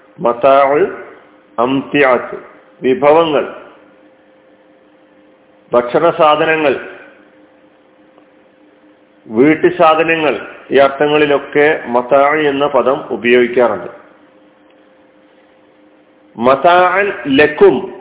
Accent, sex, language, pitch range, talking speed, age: native, male, Malayalam, 105-155 Hz, 40 wpm, 50-69